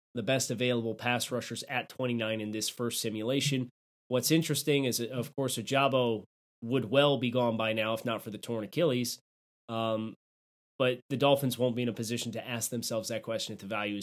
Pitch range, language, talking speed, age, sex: 115-145 Hz, English, 195 wpm, 30-49, male